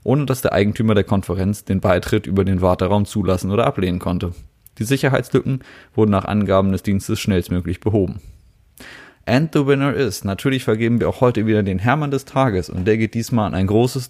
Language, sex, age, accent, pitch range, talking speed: German, male, 20-39, German, 95-120 Hz, 190 wpm